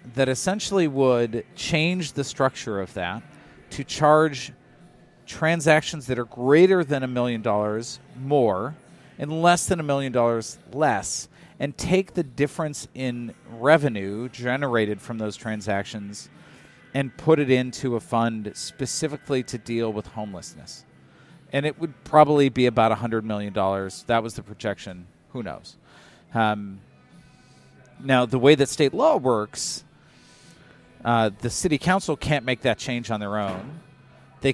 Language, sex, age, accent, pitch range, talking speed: English, male, 40-59, American, 115-145 Hz, 140 wpm